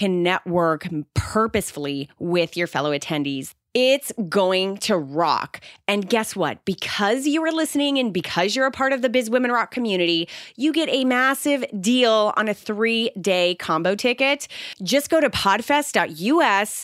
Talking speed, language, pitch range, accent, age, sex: 155 wpm, English, 170-250 Hz, American, 30-49, female